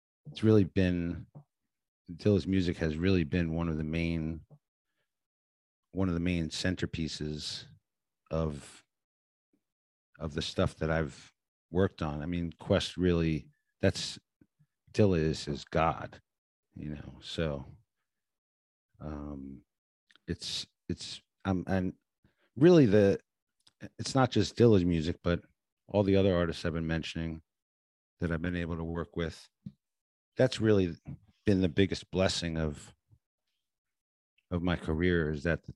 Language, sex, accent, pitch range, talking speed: English, male, American, 80-95 Hz, 130 wpm